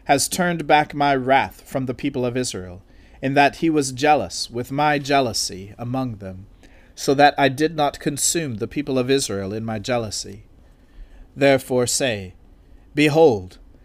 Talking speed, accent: 155 wpm, American